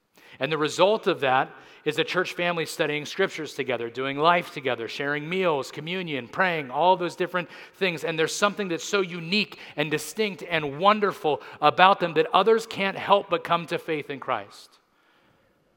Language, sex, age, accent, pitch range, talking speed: English, male, 40-59, American, 145-185 Hz, 170 wpm